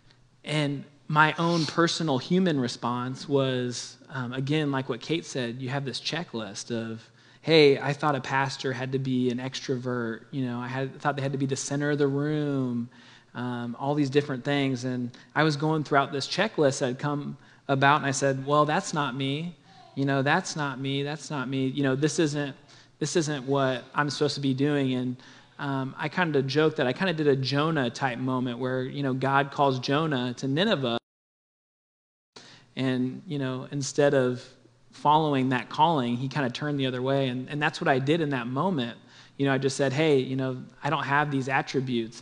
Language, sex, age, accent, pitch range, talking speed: English, male, 20-39, American, 130-145 Hz, 205 wpm